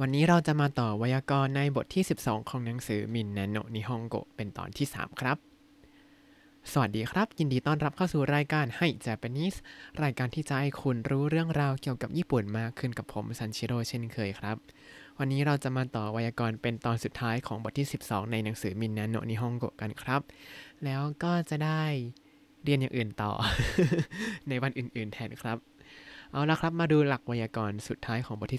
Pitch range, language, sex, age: 115-150 Hz, Thai, male, 20-39